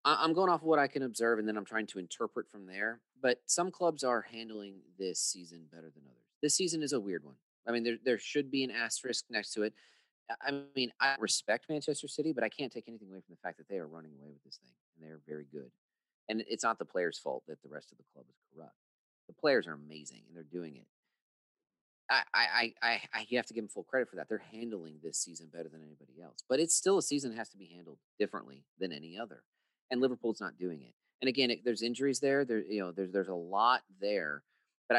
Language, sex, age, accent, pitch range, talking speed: English, male, 30-49, American, 85-130 Hz, 255 wpm